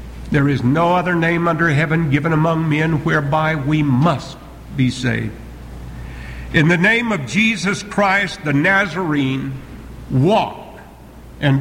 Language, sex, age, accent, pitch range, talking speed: English, male, 60-79, American, 135-175 Hz, 130 wpm